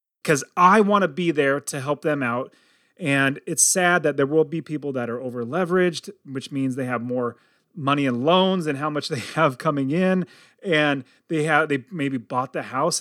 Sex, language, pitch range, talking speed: male, English, 140-185 Hz, 205 wpm